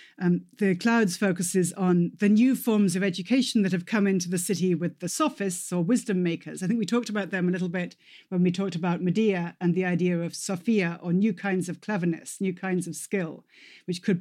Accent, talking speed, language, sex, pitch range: British, 220 wpm, English, female, 180-220 Hz